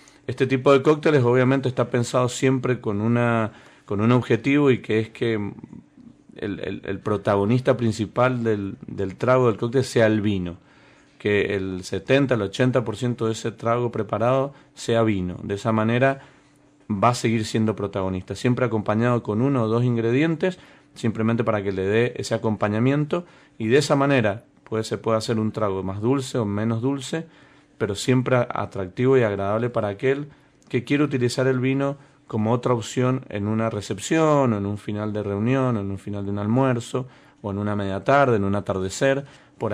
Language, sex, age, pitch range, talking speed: Spanish, male, 40-59, 105-130 Hz, 180 wpm